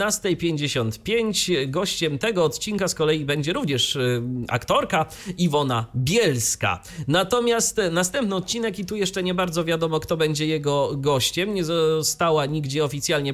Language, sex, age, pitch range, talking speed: Polish, male, 30-49, 120-170 Hz, 120 wpm